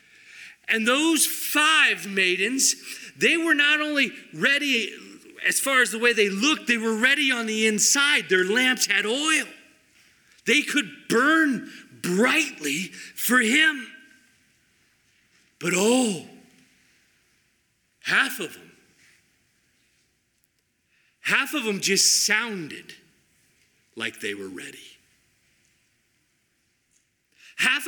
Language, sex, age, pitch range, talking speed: English, male, 40-59, 170-250 Hz, 100 wpm